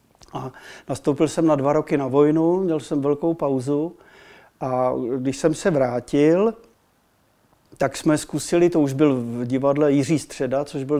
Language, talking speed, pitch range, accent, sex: Czech, 160 wpm, 135-160 Hz, native, male